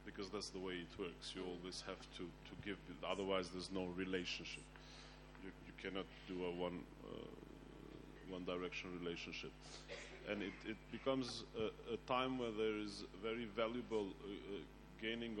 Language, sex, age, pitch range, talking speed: French, male, 30-49, 90-115 Hz, 155 wpm